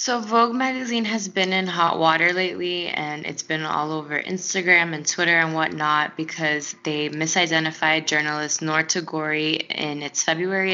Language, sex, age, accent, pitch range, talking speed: English, female, 10-29, American, 150-165 Hz, 155 wpm